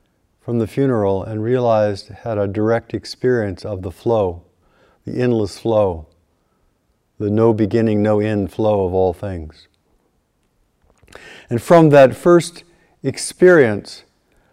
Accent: American